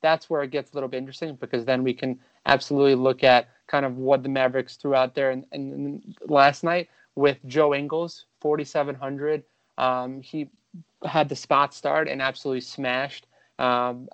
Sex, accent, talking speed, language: male, American, 175 wpm, English